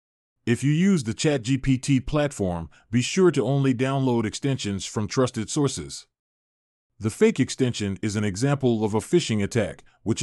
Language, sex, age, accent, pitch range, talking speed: English, male, 30-49, American, 105-140 Hz, 155 wpm